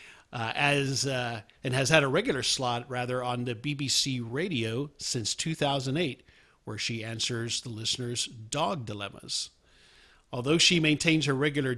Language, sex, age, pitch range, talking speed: English, male, 50-69, 115-140 Hz, 145 wpm